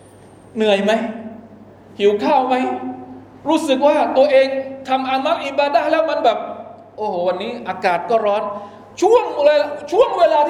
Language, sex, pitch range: Thai, male, 220-325 Hz